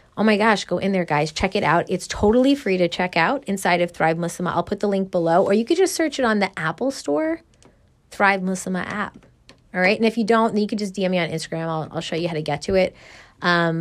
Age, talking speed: 20-39, 270 wpm